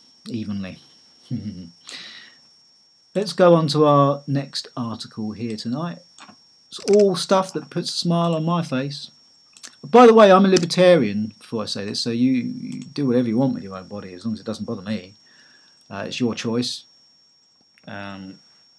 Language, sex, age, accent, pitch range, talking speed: English, male, 40-59, British, 110-140 Hz, 165 wpm